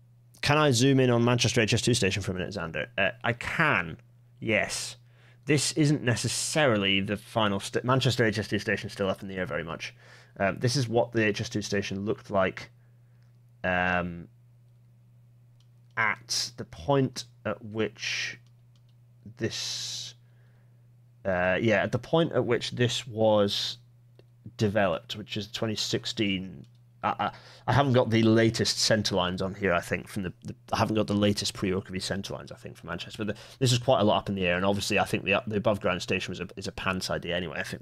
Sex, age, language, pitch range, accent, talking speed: male, 30-49, English, 95-120 Hz, British, 185 wpm